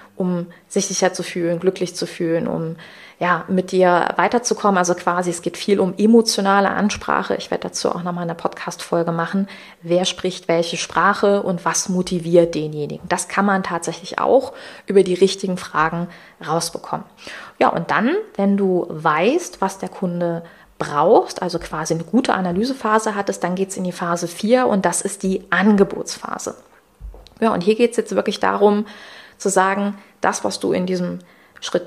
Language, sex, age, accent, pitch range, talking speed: German, female, 30-49, German, 175-200 Hz, 175 wpm